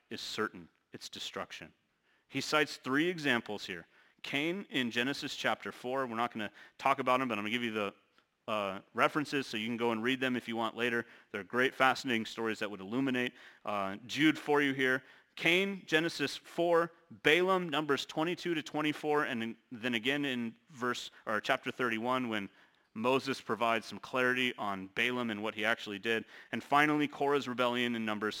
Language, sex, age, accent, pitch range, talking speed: English, male, 30-49, American, 115-140 Hz, 180 wpm